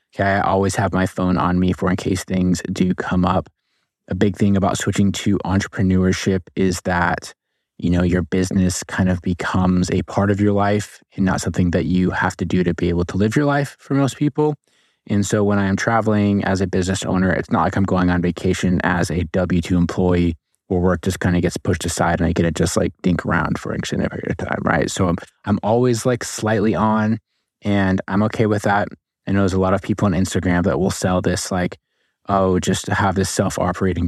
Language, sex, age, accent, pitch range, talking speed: English, male, 20-39, American, 90-100 Hz, 225 wpm